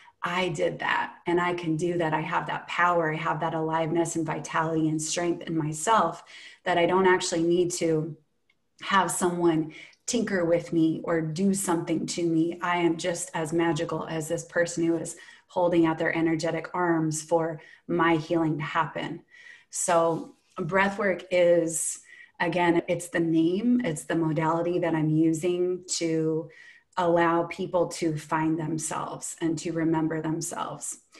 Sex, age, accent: female, 20-39, American